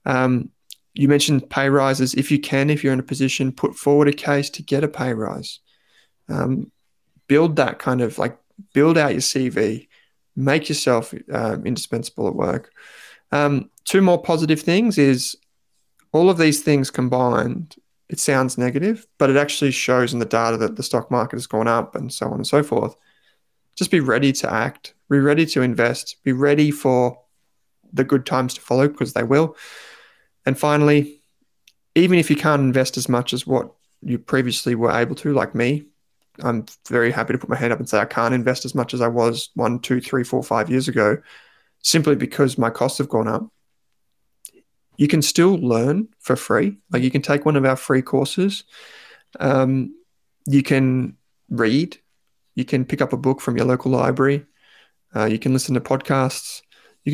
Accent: Australian